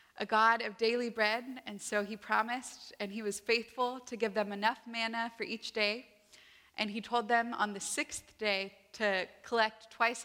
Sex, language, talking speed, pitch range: female, English, 185 wpm, 210-240 Hz